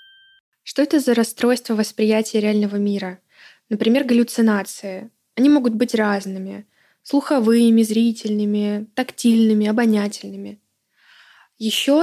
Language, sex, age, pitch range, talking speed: Russian, female, 20-39, 210-250 Hz, 90 wpm